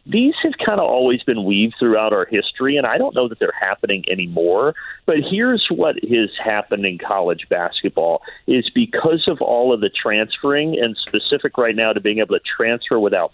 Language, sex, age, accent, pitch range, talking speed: English, male, 40-59, American, 100-130 Hz, 195 wpm